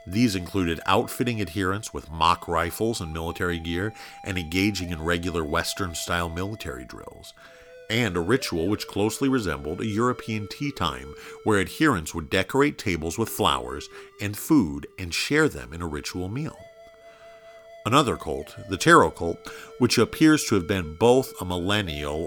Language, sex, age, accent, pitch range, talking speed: English, male, 50-69, American, 85-130 Hz, 150 wpm